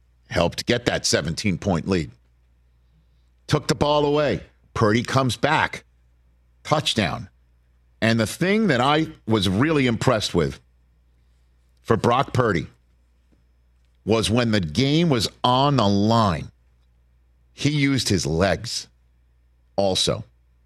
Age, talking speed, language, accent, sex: 50-69, 110 wpm, English, American, male